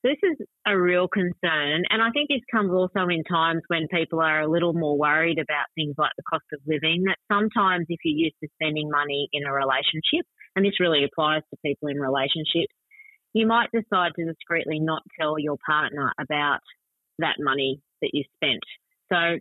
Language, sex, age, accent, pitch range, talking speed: English, female, 30-49, Australian, 155-195 Hz, 190 wpm